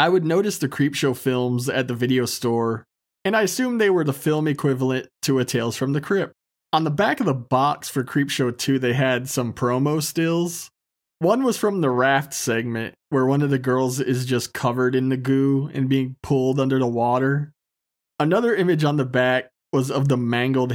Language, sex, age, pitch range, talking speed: English, male, 20-39, 125-150 Hz, 200 wpm